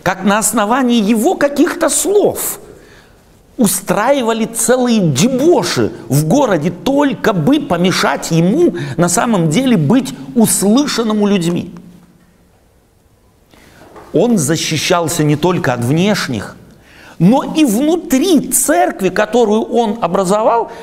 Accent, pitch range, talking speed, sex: native, 170-250 Hz, 100 wpm, male